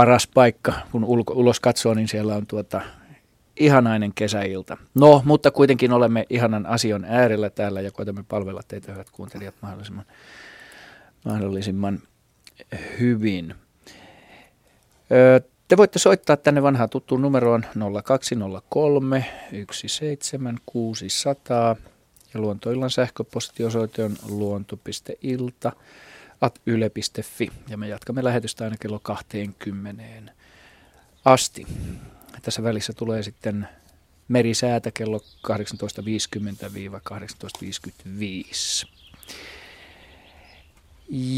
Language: Finnish